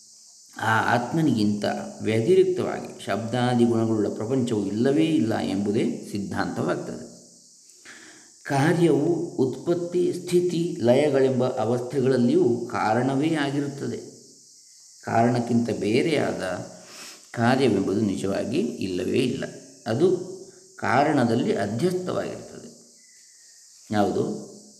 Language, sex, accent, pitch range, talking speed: Kannada, male, native, 115-150 Hz, 65 wpm